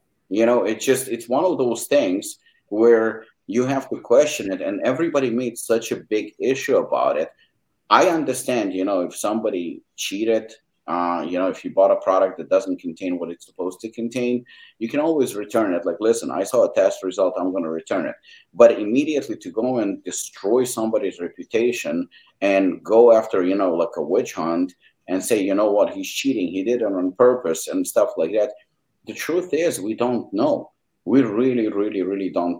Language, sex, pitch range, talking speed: English, male, 100-165 Hz, 200 wpm